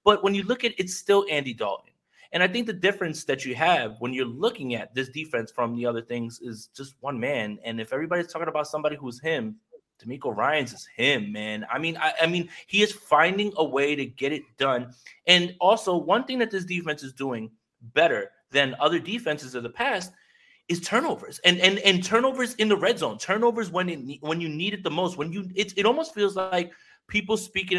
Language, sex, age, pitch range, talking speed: English, male, 30-49, 145-200 Hz, 220 wpm